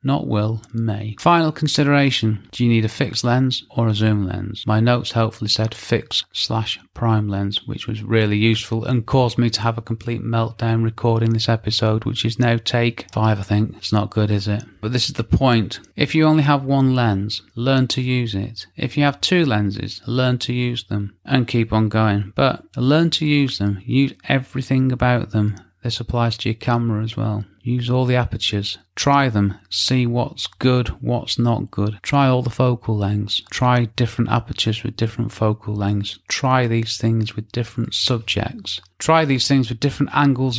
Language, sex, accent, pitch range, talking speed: English, male, British, 105-130 Hz, 190 wpm